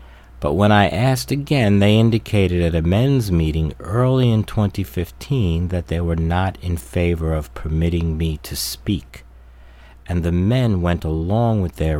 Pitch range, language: 70-95 Hz, English